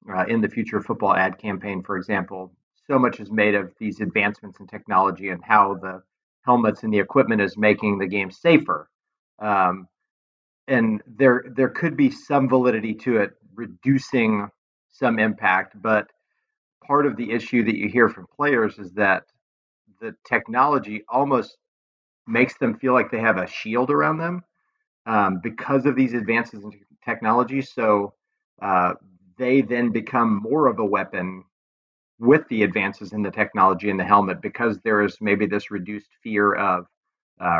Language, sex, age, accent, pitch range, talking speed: English, male, 40-59, American, 95-125 Hz, 165 wpm